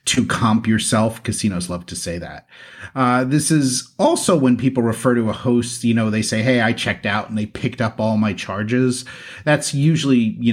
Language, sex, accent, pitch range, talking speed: English, male, American, 105-125 Hz, 205 wpm